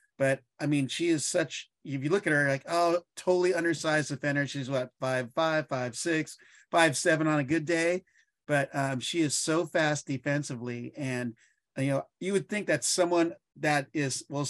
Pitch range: 135-160 Hz